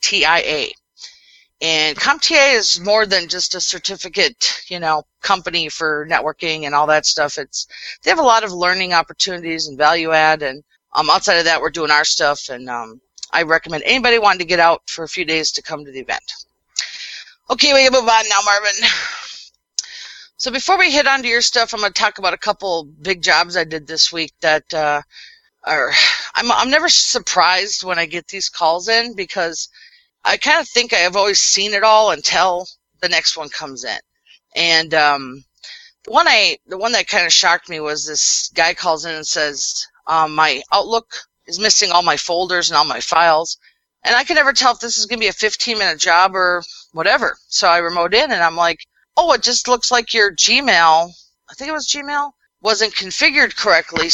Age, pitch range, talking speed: 40-59, 160-225 Hz, 205 wpm